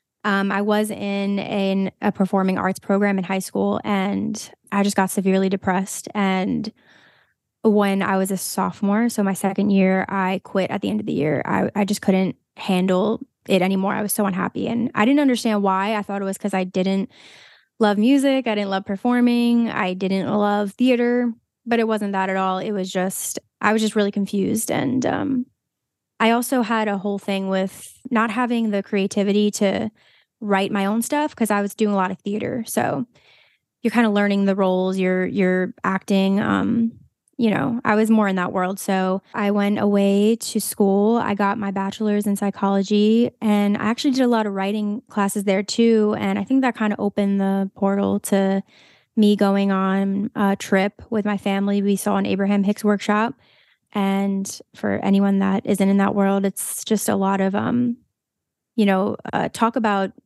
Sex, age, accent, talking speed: female, 10-29, American, 195 wpm